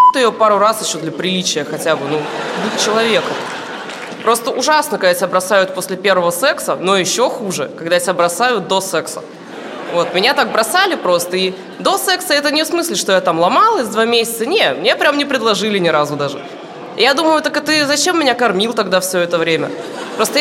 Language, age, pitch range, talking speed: Russian, 20-39, 180-255 Hz, 190 wpm